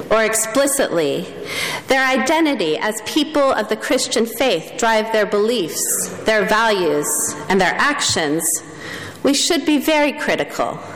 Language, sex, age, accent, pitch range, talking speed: English, female, 40-59, American, 190-250 Hz, 125 wpm